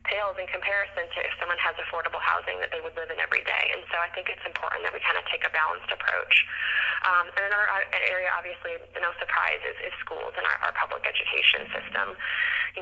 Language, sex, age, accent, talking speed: English, female, 20-39, American, 225 wpm